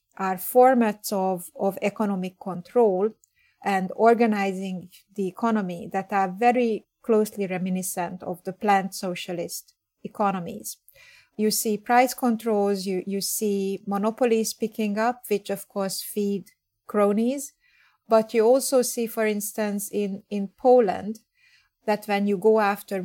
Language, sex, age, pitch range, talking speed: English, female, 30-49, 185-220 Hz, 130 wpm